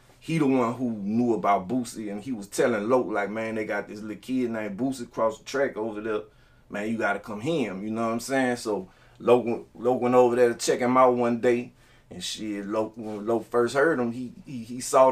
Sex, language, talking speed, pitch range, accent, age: male, English, 240 wpm, 110-125 Hz, American, 30-49